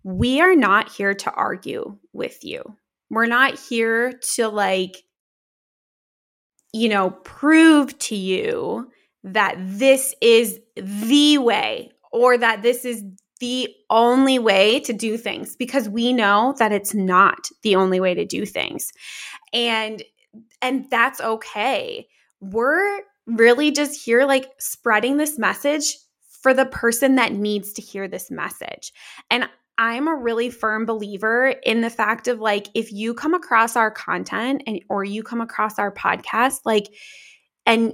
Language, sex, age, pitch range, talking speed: English, female, 20-39, 210-255 Hz, 145 wpm